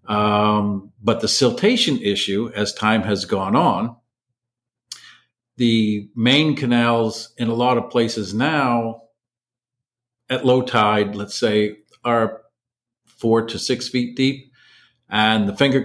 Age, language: 50-69, English